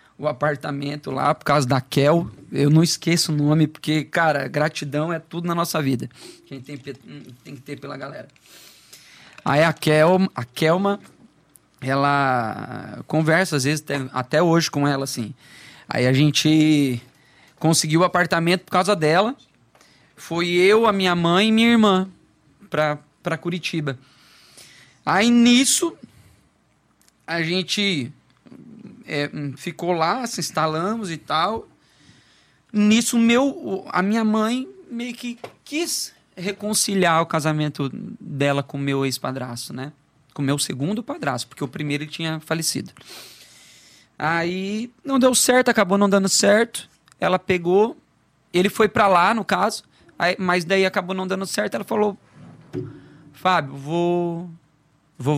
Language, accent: Portuguese, Brazilian